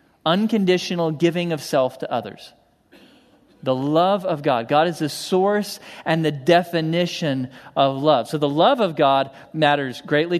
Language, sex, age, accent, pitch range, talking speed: English, male, 40-59, American, 130-165 Hz, 150 wpm